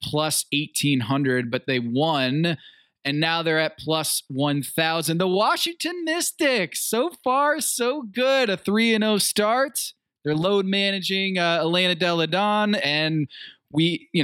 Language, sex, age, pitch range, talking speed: English, male, 20-39, 135-180 Hz, 135 wpm